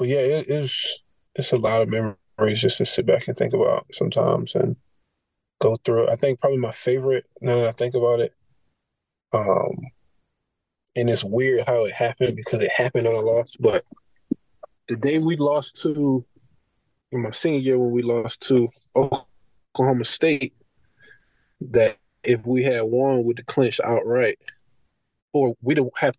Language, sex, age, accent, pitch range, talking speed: English, male, 20-39, American, 115-135 Hz, 170 wpm